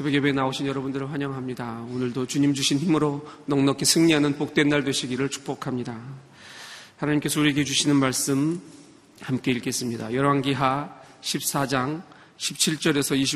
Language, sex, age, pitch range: Korean, male, 40-59, 130-150 Hz